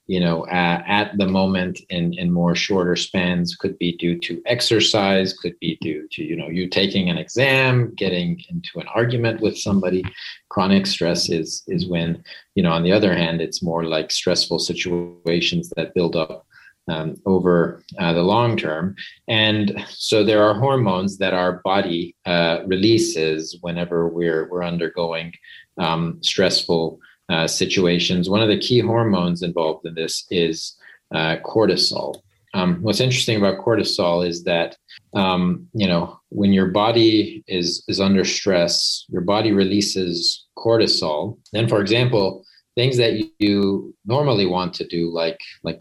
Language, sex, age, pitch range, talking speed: English, male, 40-59, 85-105 Hz, 155 wpm